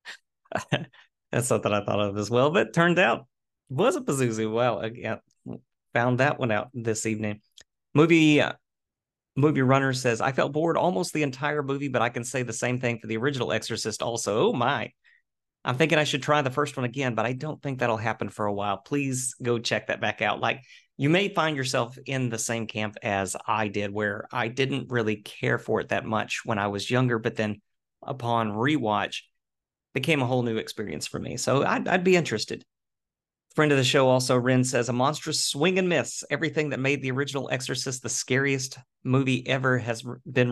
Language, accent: English, American